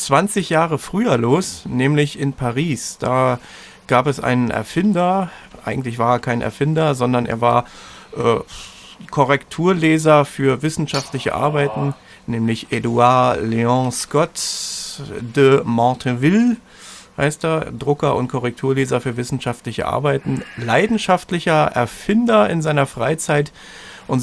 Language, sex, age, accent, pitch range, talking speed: German, male, 40-59, German, 120-150 Hz, 110 wpm